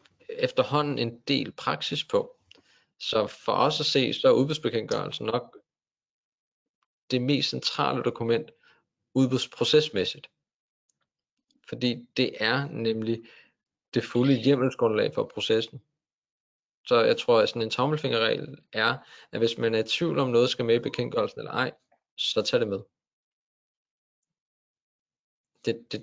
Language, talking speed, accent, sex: Danish, 130 wpm, native, male